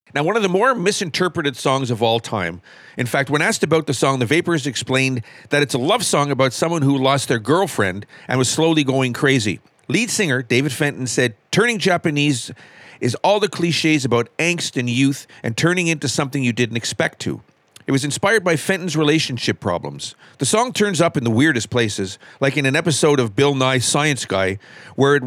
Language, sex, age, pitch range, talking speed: English, male, 50-69, 125-170 Hz, 200 wpm